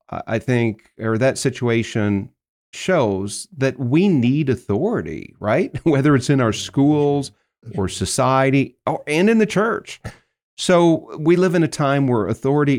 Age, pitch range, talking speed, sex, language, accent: 40-59, 105-135 Hz, 145 wpm, male, English, American